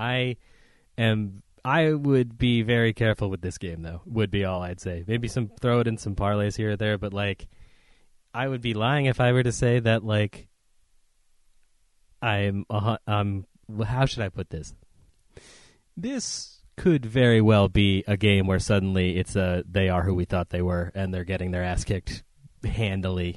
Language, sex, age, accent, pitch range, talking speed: English, male, 30-49, American, 100-125 Hz, 185 wpm